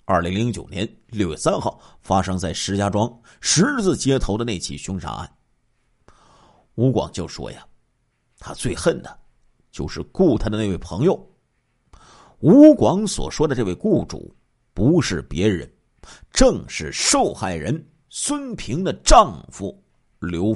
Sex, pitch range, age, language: male, 105-160 Hz, 50-69, Chinese